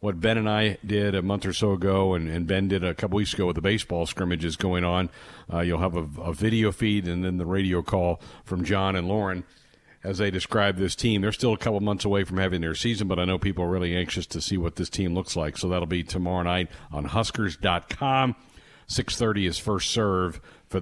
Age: 50-69